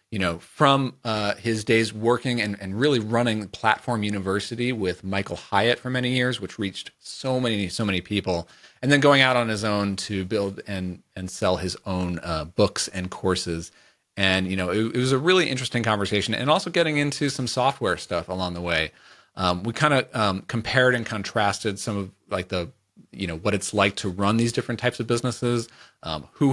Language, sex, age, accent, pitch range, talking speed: English, male, 40-59, American, 95-120 Hz, 200 wpm